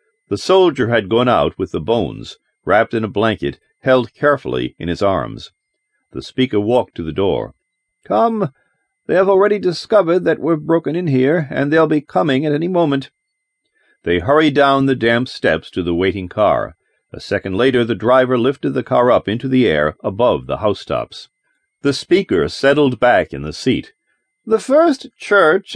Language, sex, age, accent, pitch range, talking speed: English, male, 50-69, American, 130-190 Hz, 175 wpm